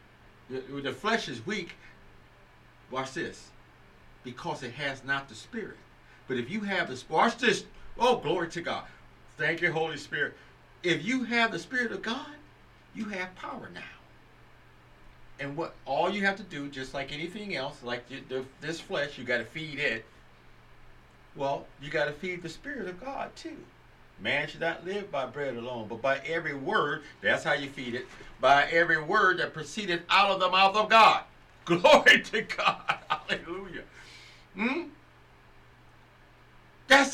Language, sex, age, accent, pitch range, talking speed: English, male, 50-69, American, 130-205 Hz, 165 wpm